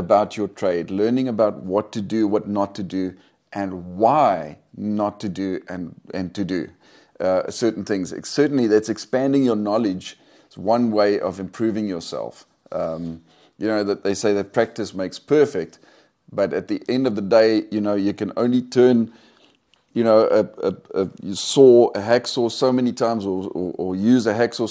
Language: English